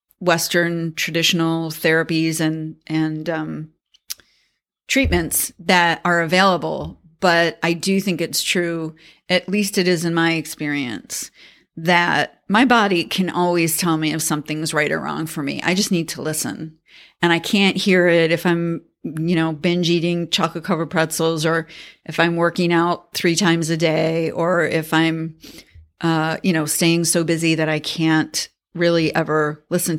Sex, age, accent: female, 40-59, American